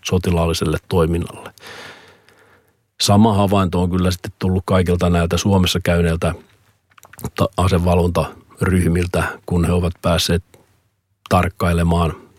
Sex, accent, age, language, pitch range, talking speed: male, native, 40-59, Finnish, 90-95 Hz, 85 wpm